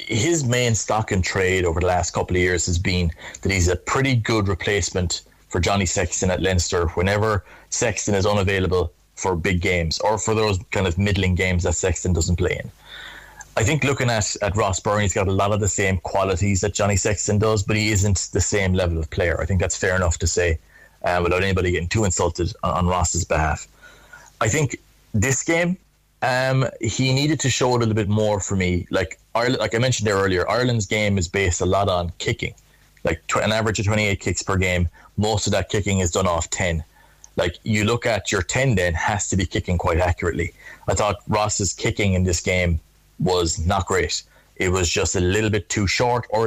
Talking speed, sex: 215 wpm, male